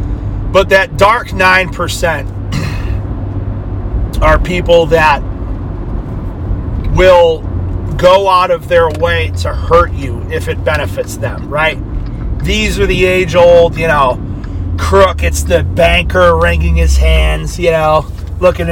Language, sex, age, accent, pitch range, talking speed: English, male, 30-49, American, 75-105 Hz, 120 wpm